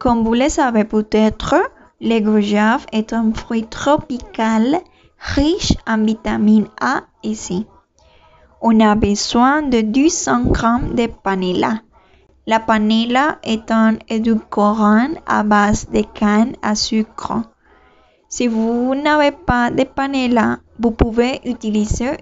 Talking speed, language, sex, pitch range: 120 wpm, French, female, 215-265 Hz